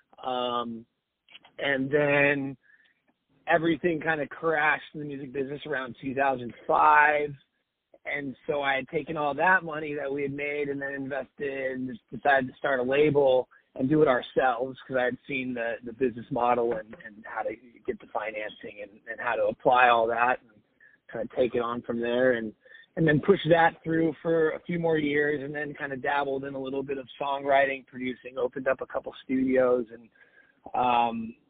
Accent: American